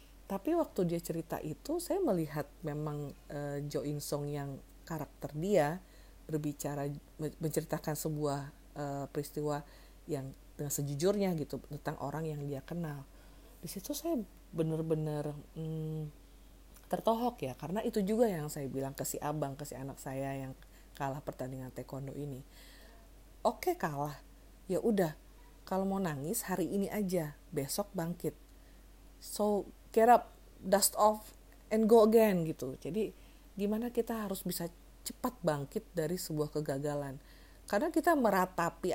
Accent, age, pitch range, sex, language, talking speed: native, 40-59, 145-195 Hz, female, Indonesian, 135 wpm